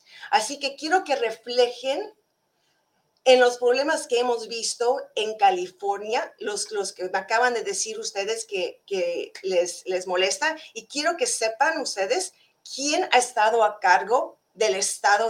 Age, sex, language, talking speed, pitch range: 40-59, female, Spanish, 145 wpm, 200-300 Hz